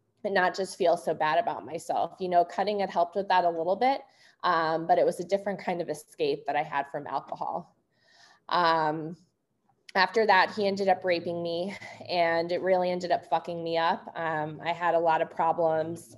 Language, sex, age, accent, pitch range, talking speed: English, female, 20-39, American, 155-185 Hz, 200 wpm